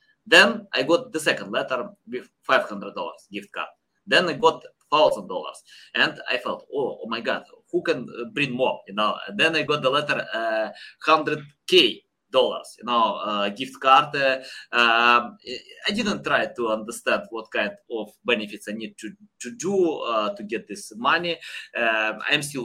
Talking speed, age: 170 wpm, 20-39